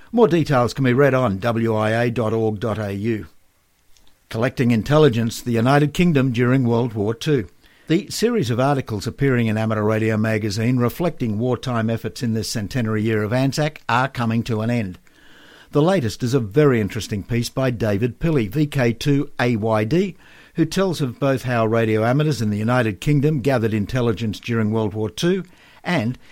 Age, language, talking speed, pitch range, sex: 60-79, English, 155 wpm, 110-145 Hz, male